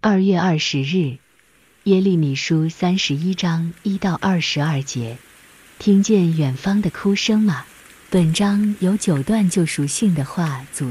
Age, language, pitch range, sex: 50-69, Chinese, 145-195 Hz, female